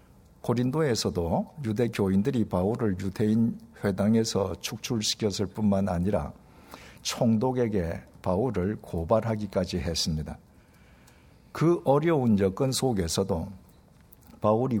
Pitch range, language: 95-115 Hz, Korean